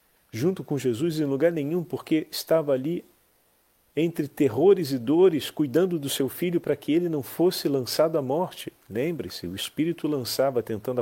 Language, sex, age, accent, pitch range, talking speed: Portuguese, male, 40-59, Brazilian, 110-145 Hz, 165 wpm